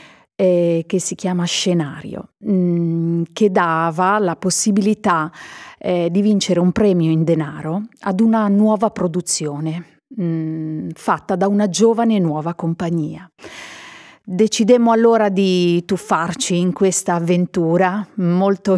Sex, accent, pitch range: female, native, 170-210 Hz